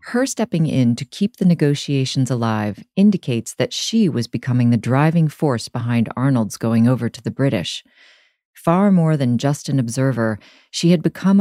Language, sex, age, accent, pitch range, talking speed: English, female, 40-59, American, 125-170 Hz, 170 wpm